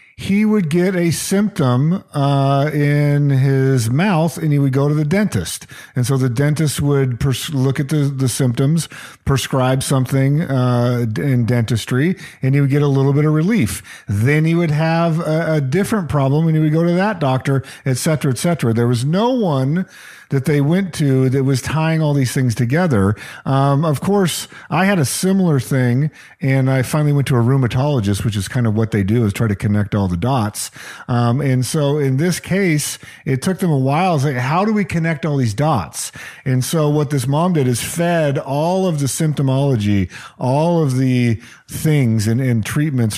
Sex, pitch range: male, 125-160 Hz